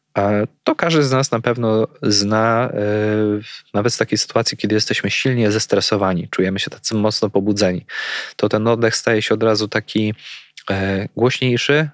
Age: 20-39